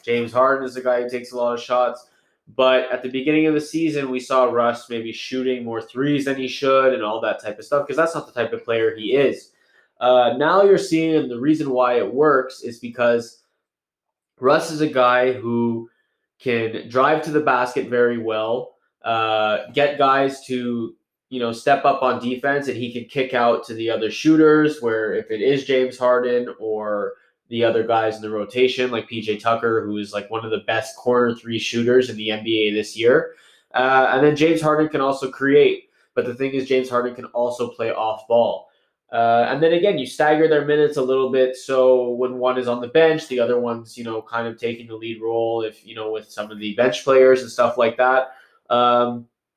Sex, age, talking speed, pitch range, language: male, 20-39, 215 wpm, 115-135 Hz, English